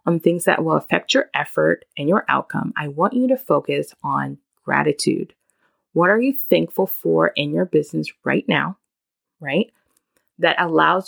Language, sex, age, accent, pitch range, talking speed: English, female, 20-39, American, 155-225 Hz, 160 wpm